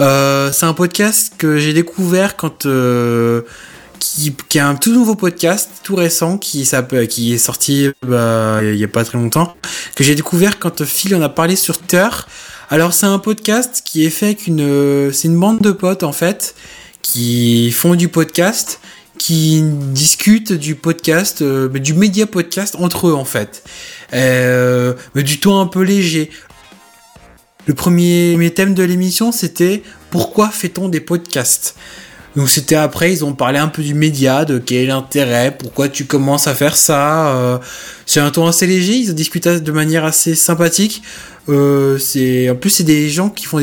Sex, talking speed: male, 180 wpm